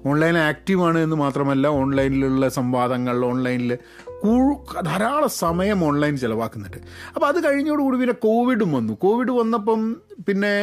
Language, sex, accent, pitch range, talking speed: Malayalam, male, native, 140-225 Hz, 130 wpm